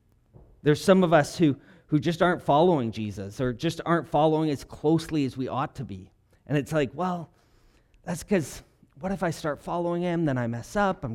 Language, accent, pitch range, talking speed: English, American, 120-180 Hz, 205 wpm